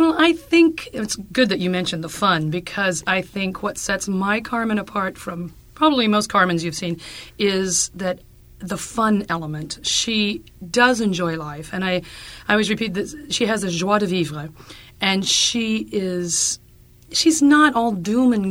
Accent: American